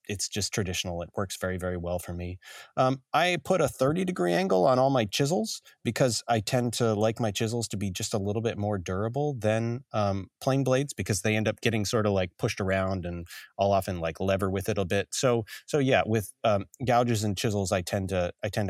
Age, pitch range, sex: 30-49, 100-130 Hz, male